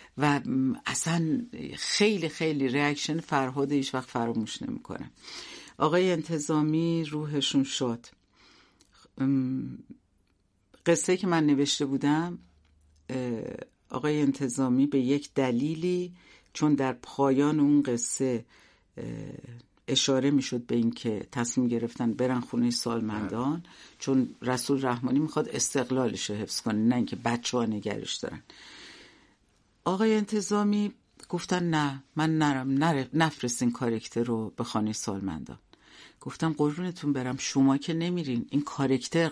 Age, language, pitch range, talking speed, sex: 60-79, Persian, 120-160 Hz, 110 wpm, female